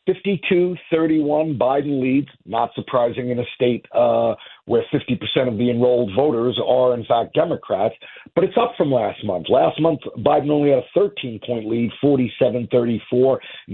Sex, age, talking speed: male, 50-69, 145 wpm